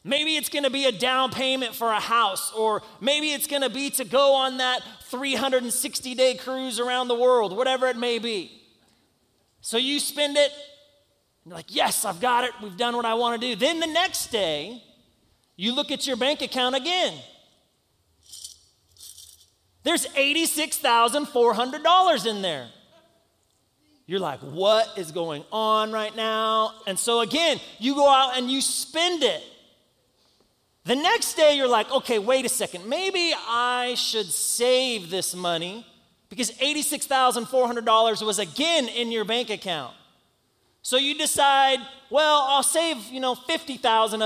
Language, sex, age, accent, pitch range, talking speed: English, male, 30-49, American, 220-280 Hz, 155 wpm